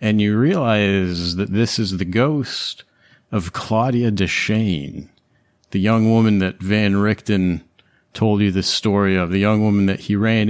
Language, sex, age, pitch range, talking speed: English, male, 40-59, 95-115 Hz, 160 wpm